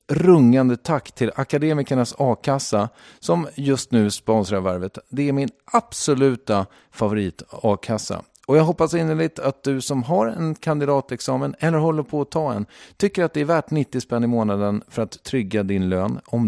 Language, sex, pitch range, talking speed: English, male, 100-135 Hz, 170 wpm